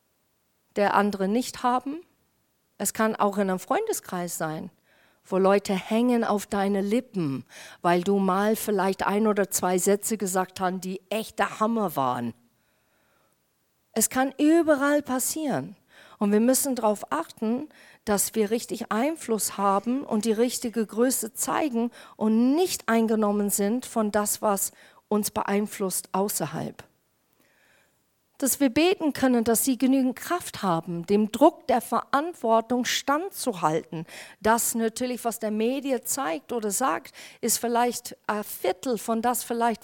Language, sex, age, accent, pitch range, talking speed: German, female, 50-69, German, 200-250 Hz, 135 wpm